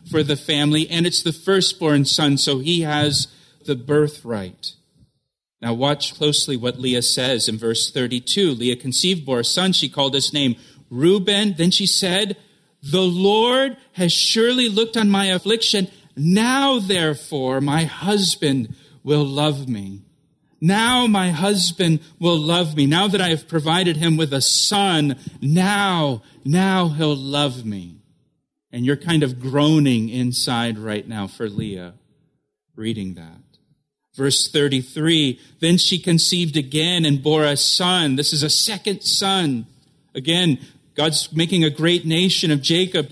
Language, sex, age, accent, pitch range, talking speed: English, male, 40-59, American, 140-185 Hz, 145 wpm